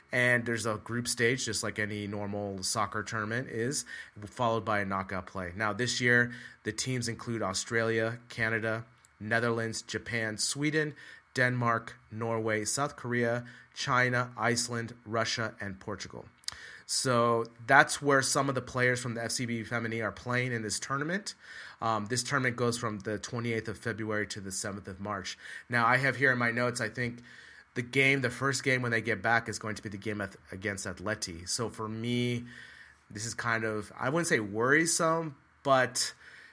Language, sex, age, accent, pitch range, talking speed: English, male, 30-49, American, 110-125 Hz, 170 wpm